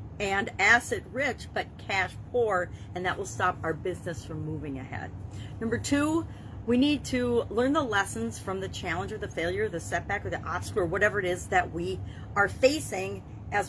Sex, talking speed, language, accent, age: female, 195 wpm, English, American, 40-59